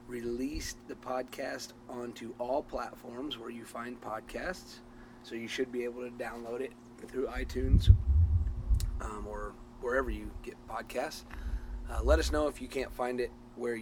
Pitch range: 105-120 Hz